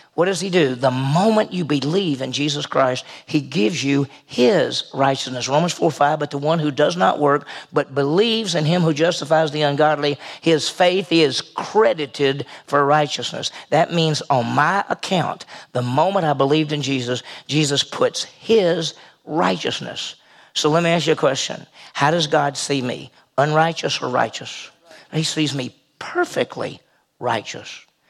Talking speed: 160 wpm